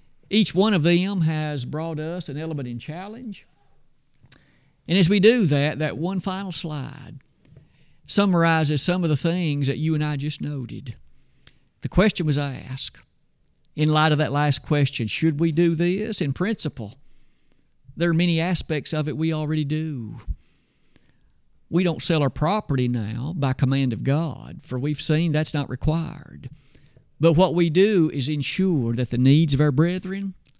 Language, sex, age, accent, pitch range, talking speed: English, male, 50-69, American, 140-170 Hz, 165 wpm